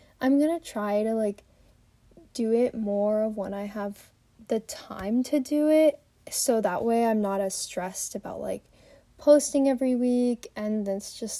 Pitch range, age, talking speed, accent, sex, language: 210-275 Hz, 10-29, 170 wpm, American, female, English